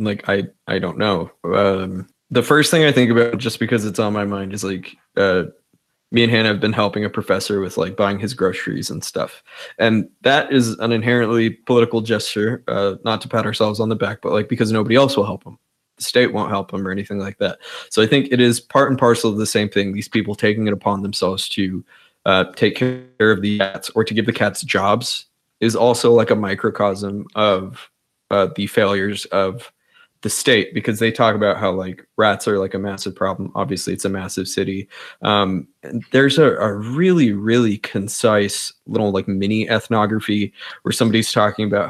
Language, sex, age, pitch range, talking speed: English, male, 20-39, 100-115 Hz, 205 wpm